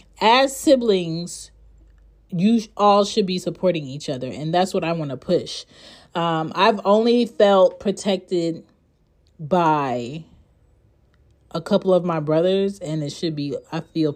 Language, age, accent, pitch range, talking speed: English, 30-49, American, 150-200 Hz, 140 wpm